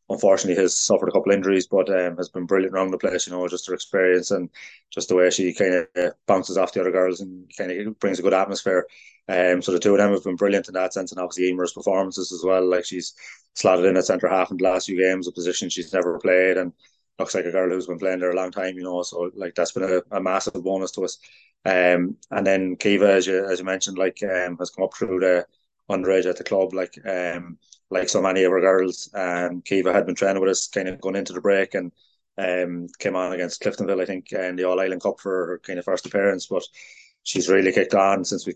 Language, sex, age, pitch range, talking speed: English, male, 20-39, 90-95 Hz, 255 wpm